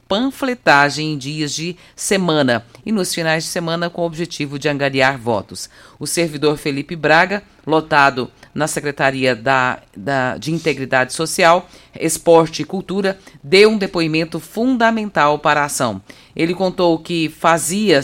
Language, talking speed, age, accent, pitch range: Portuguese, 135 wpm, 50-69, Brazilian, 150-190 Hz